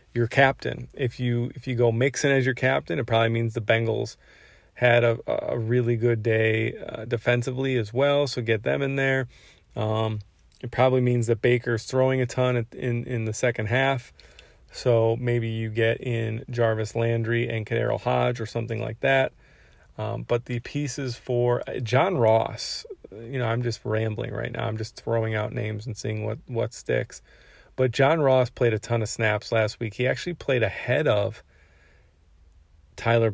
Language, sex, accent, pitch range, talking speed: English, male, American, 110-125 Hz, 180 wpm